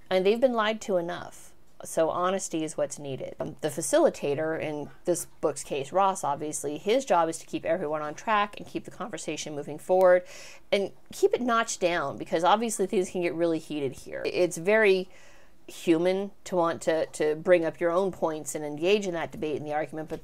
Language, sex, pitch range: English, female, 155-190 Hz